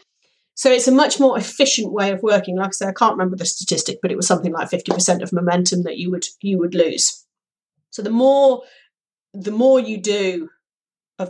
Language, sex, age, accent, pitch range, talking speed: English, female, 40-59, British, 190-265 Hz, 205 wpm